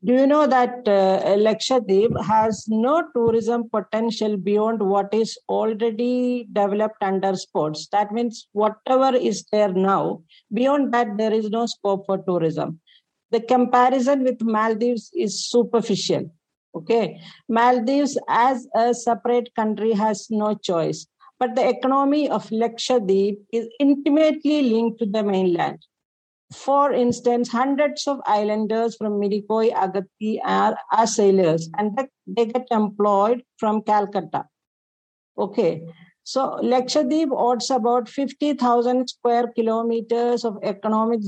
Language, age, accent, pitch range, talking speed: English, 50-69, Indian, 205-250 Hz, 120 wpm